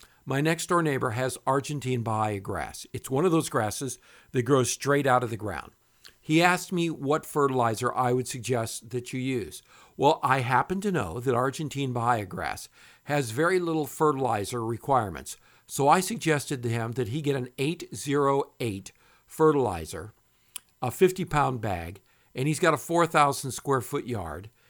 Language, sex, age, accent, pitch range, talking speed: English, male, 60-79, American, 120-155 Hz, 160 wpm